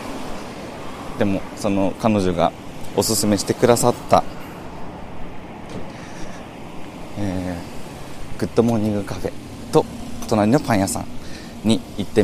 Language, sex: Japanese, male